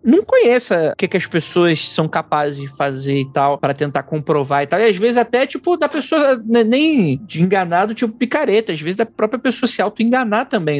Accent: Brazilian